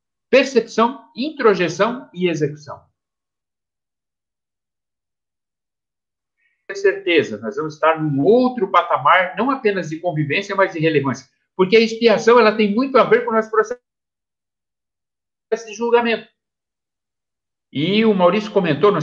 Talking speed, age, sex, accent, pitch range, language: 120 wpm, 60-79, male, Brazilian, 140-215 Hz, Portuguese